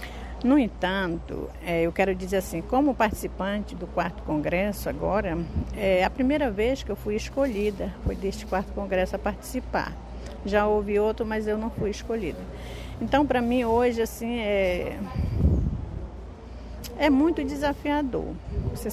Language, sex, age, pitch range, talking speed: Portuguese, female, 50-69, 180-225 Hz, 145 wpm